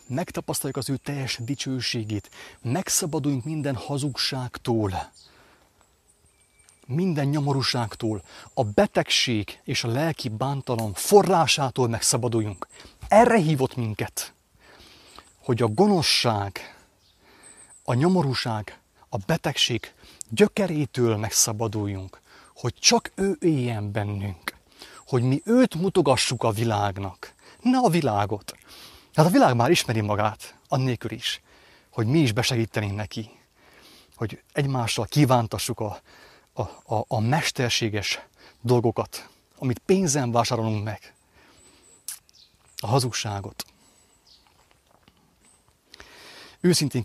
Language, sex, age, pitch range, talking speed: English, male, 30-49, 110-140 Hz, 90 wpm